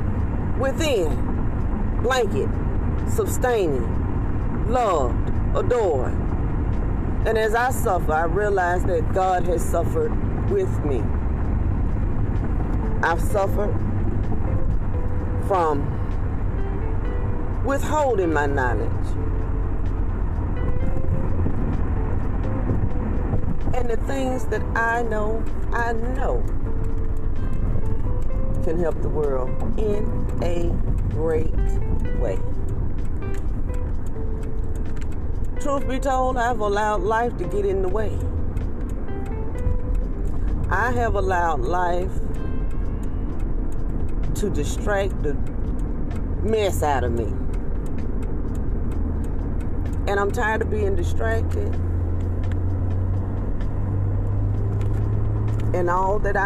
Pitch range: 85-105 Hz